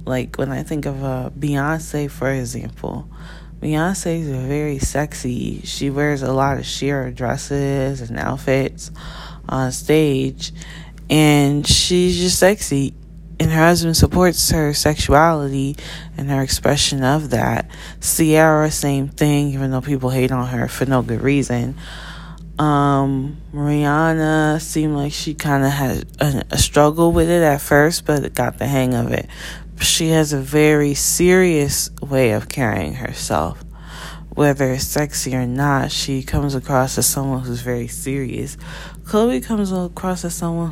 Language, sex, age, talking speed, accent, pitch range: English, female, 10-29, 145 wpm, American, 135-165 Hz